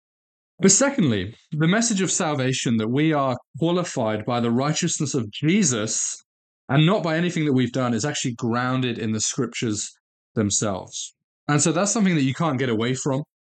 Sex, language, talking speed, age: male, English, 175 wpm, 20-39